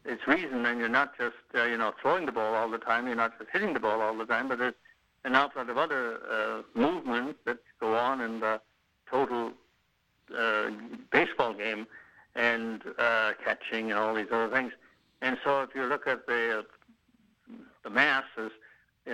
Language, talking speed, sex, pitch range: English, 190 wpm, male, 115-135 Hz